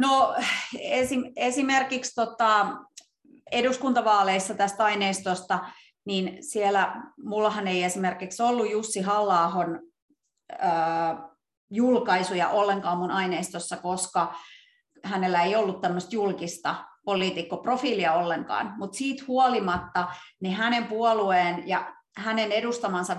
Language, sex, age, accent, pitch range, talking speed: English, female, 30-49, Finnish, 180-215 Hz, 95 wpm